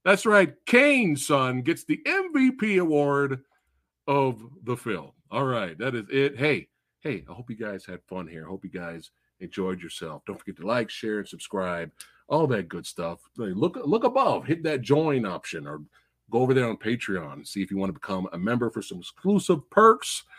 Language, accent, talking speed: English, American, 200 wpm